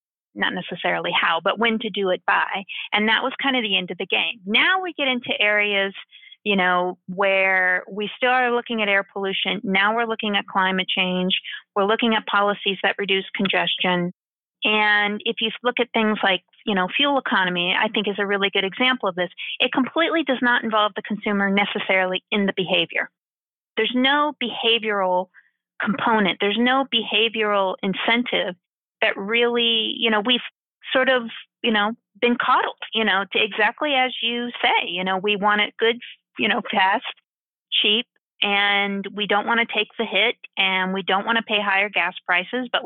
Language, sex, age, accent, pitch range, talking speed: English, female, 30-49, American, 195-235 Hz, 185 wpm